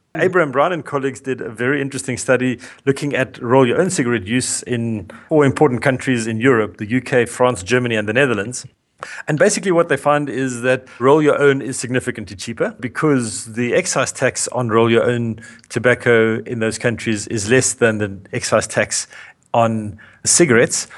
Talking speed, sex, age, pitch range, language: 160 wpm, male, 40-59, 115-140 Hz, English